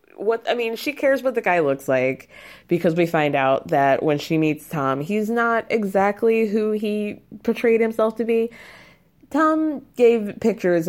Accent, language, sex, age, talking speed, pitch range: American, English, female, 20-39, 170 wpm, 170-235 Hz